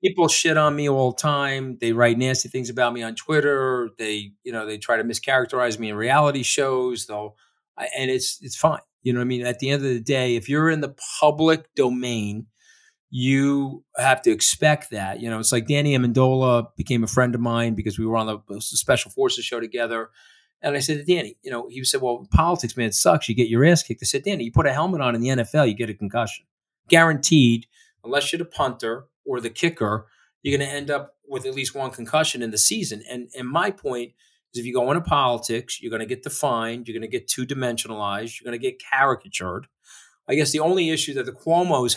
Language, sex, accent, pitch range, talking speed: English, male, American, 115-145 Hz, 230 wpm